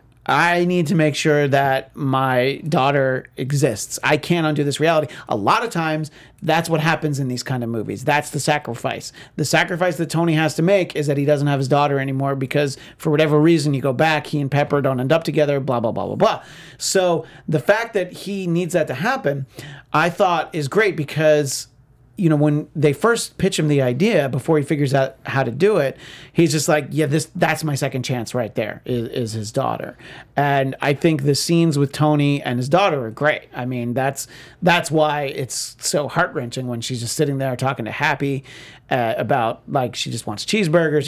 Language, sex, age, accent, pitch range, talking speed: English, male, 40-59, American, 135-160 Hz, 210 wpm